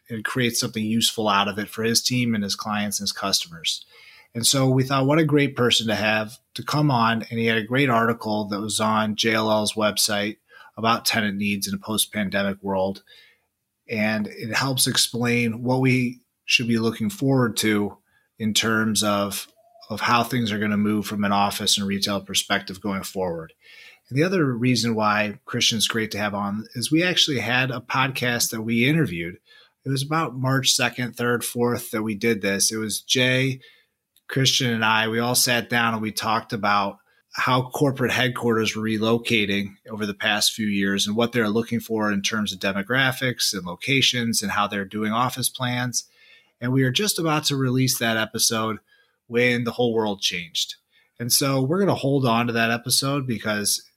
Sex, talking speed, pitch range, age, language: male, 190 wpm, 105-125 Hz, 30-49, English